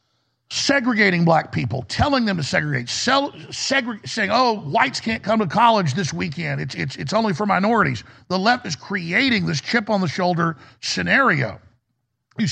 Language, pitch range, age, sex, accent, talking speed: English, 130-210 Hz, 50-69, male, American, 155 wpm